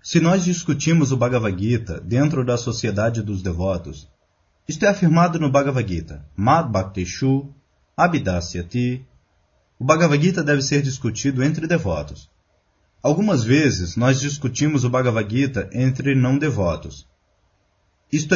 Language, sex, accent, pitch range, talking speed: Portuguese, male, Brazilian, 95-150 Hz, 125 wpm